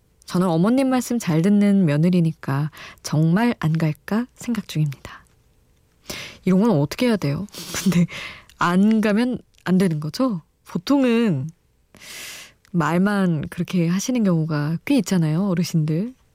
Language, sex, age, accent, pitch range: Korean, female, 20-39, native, 165-225 Hz